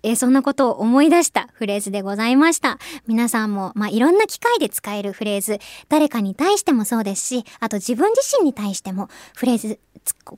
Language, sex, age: Japanese, male, 20-39